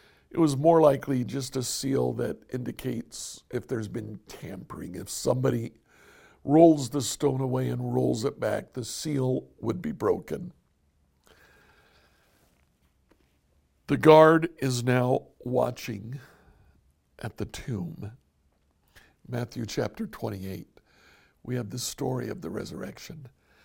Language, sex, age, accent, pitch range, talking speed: English, male, 60-79, American, 95-150 Hz, 115 wpm